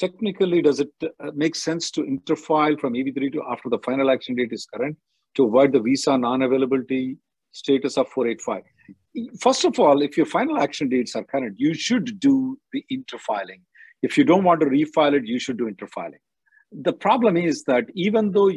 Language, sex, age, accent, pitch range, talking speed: English, male, 50-69, Indian, 125-175 Hz, 185 wpm